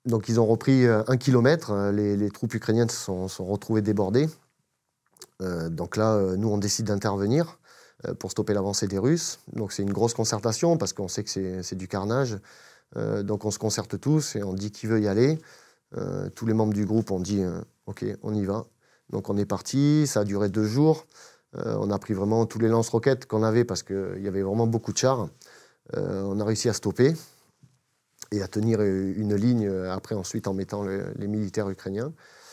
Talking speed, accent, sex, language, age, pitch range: 210 wpm, French, male, French, 30-49, 100-120 Hz